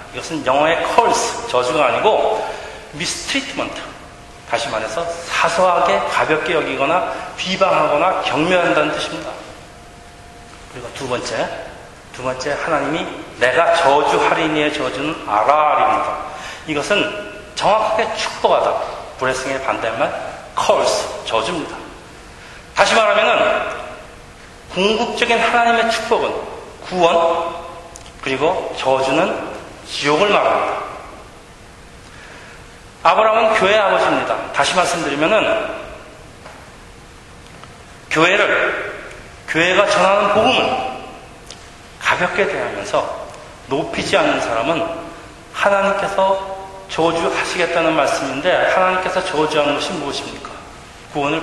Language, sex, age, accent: Korean, male, 40-59, native